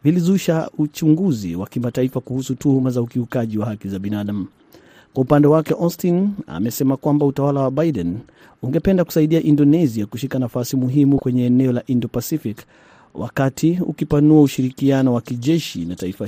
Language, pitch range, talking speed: Swahili, 125-155 Hz, 140 wpm